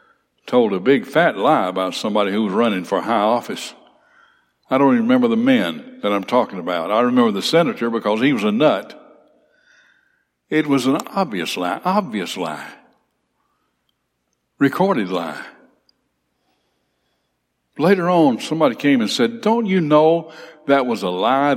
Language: English